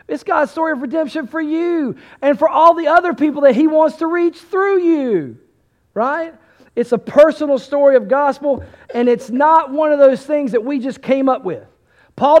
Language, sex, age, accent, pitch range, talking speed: English, male, 40-59, American, 235-310 Hz, 200 wpm